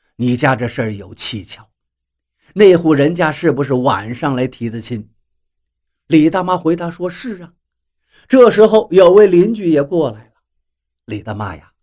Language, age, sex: Chinese, 50-69, male